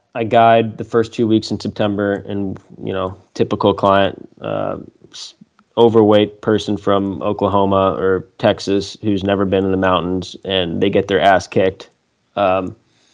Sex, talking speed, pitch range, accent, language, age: male, 150 wpm, 95-110 Hz, American, English, 20-39